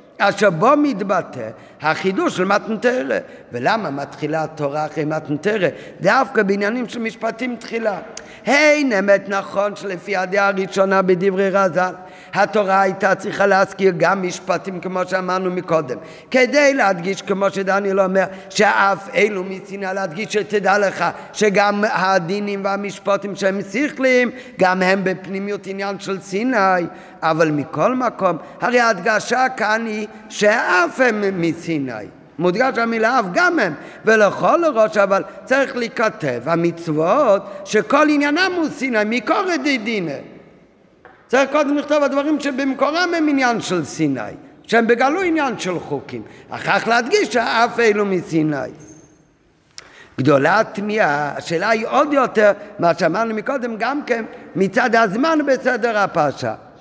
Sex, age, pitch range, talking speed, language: male, 50-69, 170-230 Hz, 125 wpm, Hebrew